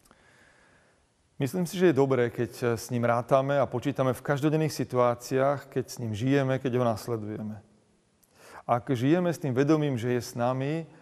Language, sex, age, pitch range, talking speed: Slovak, male, 40-59, 115-145 Hz, 165 wpm